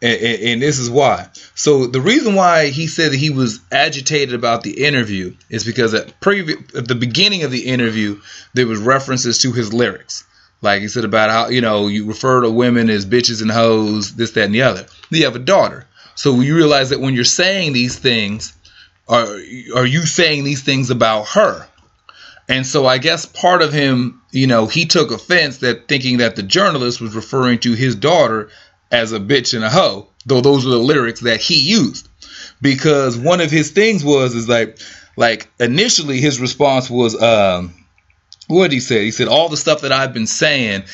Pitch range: 110-140 Hz